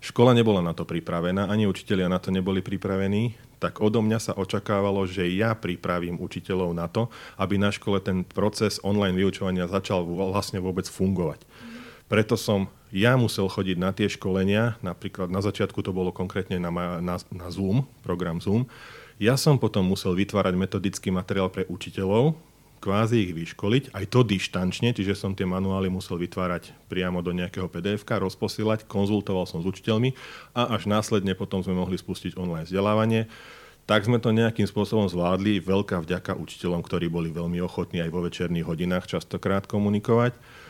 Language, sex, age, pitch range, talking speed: Slovak, male, 40-59, 90-110 Hz, 165 wpm